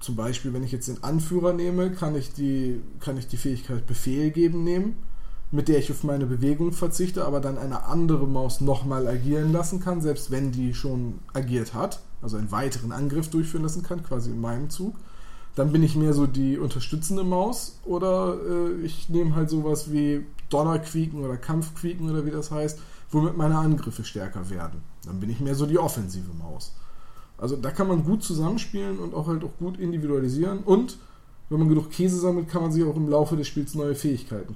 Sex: male